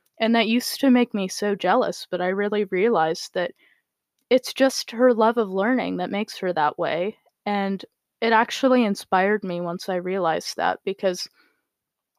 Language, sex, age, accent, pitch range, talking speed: English, female, 10-29, American, 190-225 Hz, 165 wpm